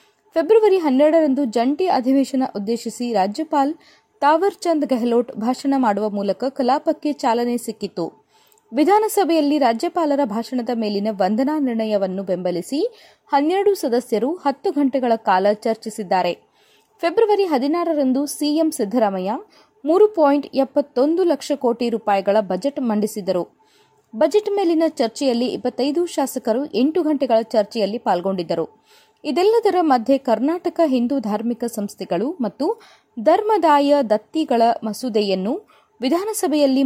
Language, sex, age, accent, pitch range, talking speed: Kannada, female, 20-39, native, 225-330 Hz, 95 wpm